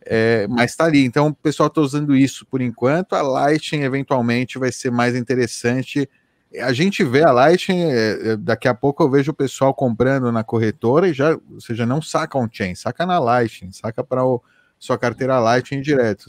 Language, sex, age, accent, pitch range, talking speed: Portuguese, male, 30-49, Brazilian, 105-130 Hz, 190 wpm